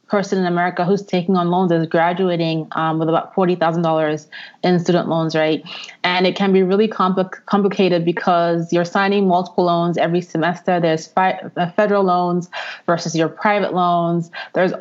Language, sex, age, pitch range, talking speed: English, female, 20-39, 175-200 Hz, 165 wpm